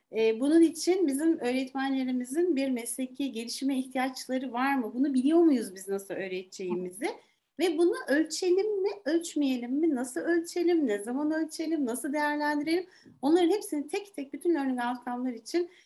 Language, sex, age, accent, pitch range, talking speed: Turkish, female, 40-59, native, 230-315 Hz, 140 wpm